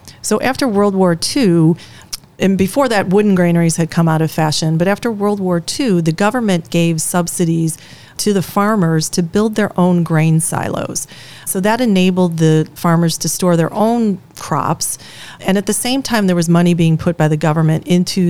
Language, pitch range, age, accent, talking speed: English, 155-185 Hz, 40-59, American, 185 wpm